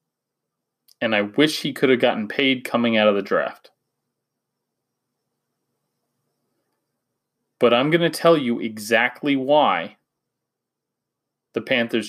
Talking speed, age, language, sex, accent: 115 wpm, 30-49, English, male, American